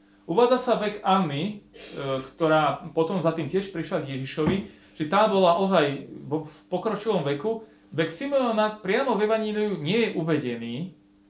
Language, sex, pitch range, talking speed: Slovak, male, 125-185 Hz, 145 wpm